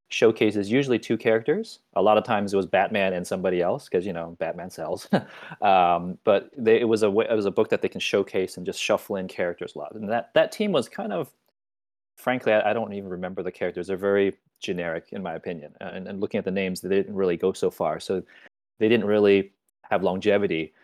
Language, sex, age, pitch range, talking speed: English, male, 30-49, 95-110 Hz, 225 wpm